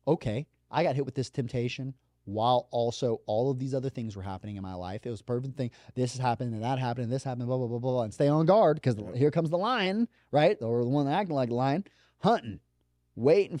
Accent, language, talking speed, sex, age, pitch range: American, English, 250 wpm, male, 30-49, 95-125 Hz